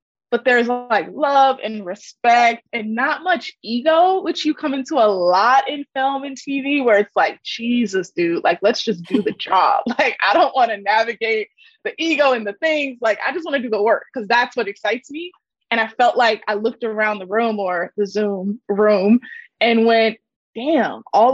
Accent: American